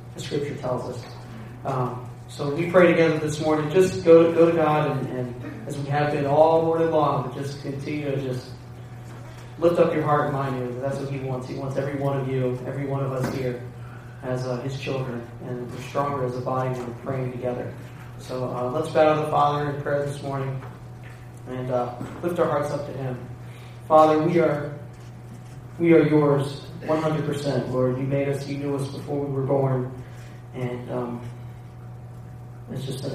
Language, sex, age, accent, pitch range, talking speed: English, male, 20-39, American, 125-145 Hz, 200 wpm